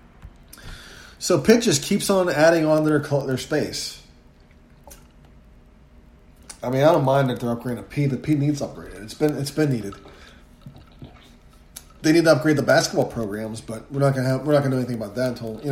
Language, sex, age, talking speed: English, male, 30-49, 190 wpm